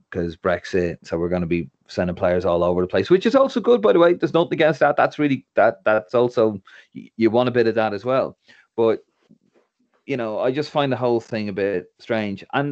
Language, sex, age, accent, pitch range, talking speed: English, male, 30-49, Irish, 90-115 Hz, 235 wpm